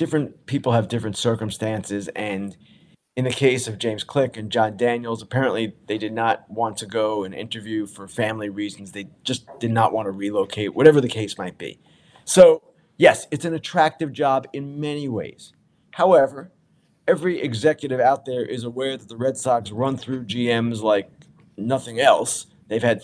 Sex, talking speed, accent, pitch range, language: male, 175 wpm, American, 115-150 Hz, English